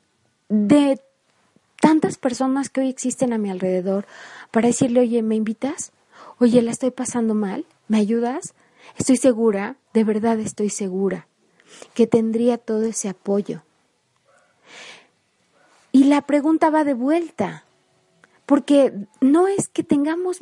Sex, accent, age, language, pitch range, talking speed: female, Mexican, 30-49, Spanish, 220-285 Hz, 125 wpm